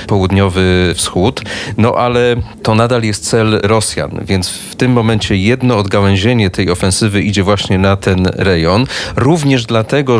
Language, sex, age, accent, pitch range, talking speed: Polish, male, 30-49, native, 100-120 Hz, 140 wpm